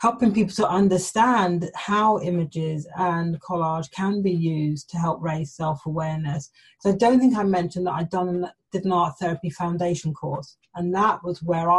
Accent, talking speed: British, 170 wpm